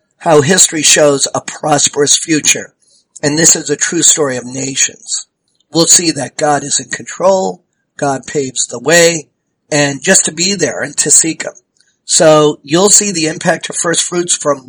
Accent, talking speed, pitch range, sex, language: American, 175 wpm, 145-175 Hz, male, English